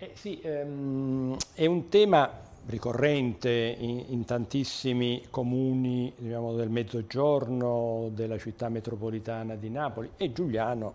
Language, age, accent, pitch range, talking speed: Italian, 50-69, native, 115-130 Hz, 110 wpm